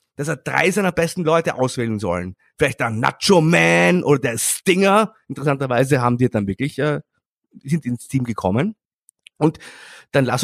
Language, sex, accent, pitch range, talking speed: German, male, German, 125-165 Hz, 160 wpm